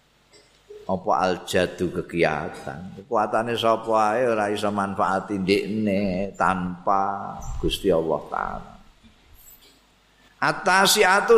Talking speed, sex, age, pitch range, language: 80 wpm, male, 50-69, 95-130 Hz, Indonesian